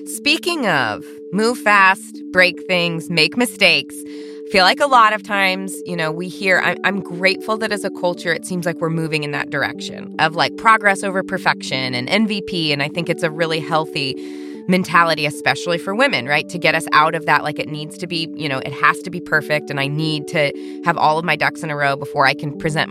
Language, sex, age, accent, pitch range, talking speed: English, female, 20-39, American, 145-185 Hz, 230 wpm